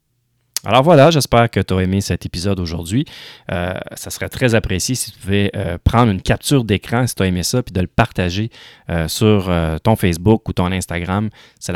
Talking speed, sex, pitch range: 210 wpm, male, 90-115 Hz